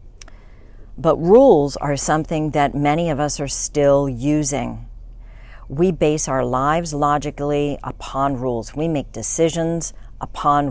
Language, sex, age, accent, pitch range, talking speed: English, female, 50-69, American, 125-165 Hz, 125 wpm